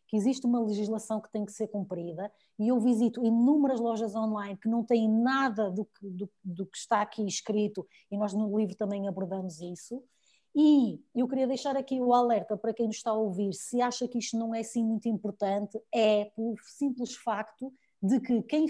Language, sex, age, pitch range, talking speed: Portuguese, female, 20-39, 200-245 Hz, 200 wpm